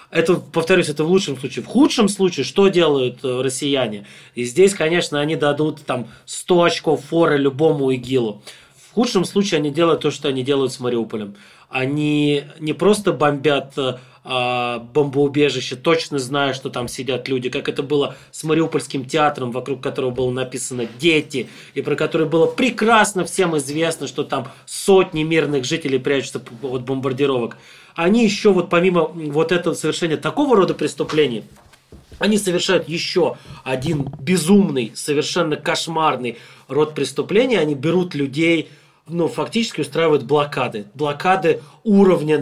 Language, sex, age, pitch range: Russian, male, 20-39, 140-180 Hz